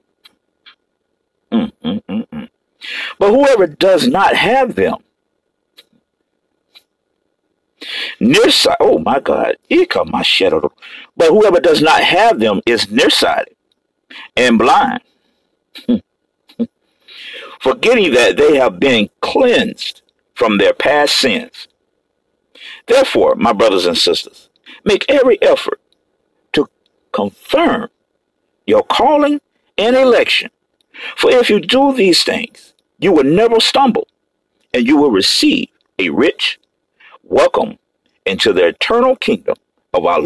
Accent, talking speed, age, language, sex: American, 110 wpm, 50-69, English, male